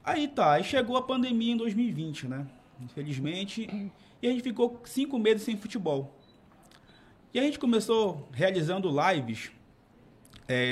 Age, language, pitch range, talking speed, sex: 20-39, Portuguese, 145-190 Hz, 140 wpm, male